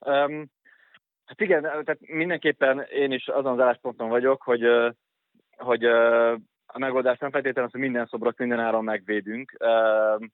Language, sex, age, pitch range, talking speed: Hungarian, male, 20-39, 105-120 Hz, 140 wpm